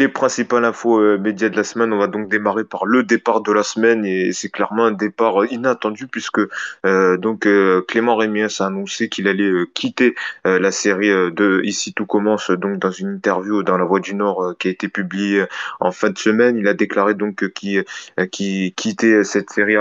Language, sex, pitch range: French, male, 95-110 Hz